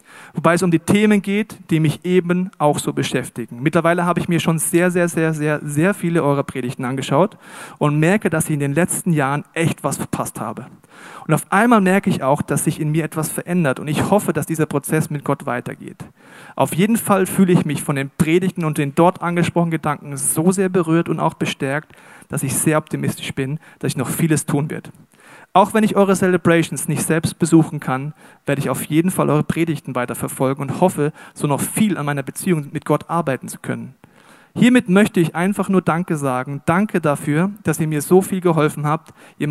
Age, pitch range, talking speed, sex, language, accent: 40-59, 145-180 Hz, 210 wpm, male, German, German